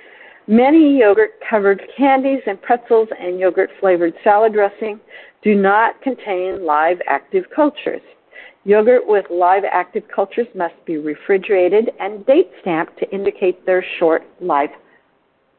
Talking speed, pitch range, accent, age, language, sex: 120 wpm, 185-255 Hz, American, 50-69, English, female